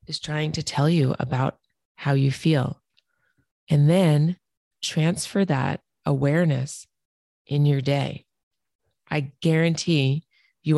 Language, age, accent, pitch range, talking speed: English, 30-49, American, 135-155 Hz, 110 wpm